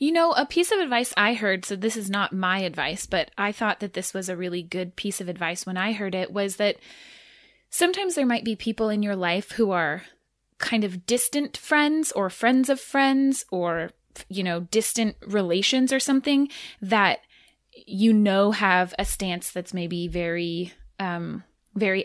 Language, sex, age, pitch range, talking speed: English, female, 20-39, 190-250 Hz, 185 wpm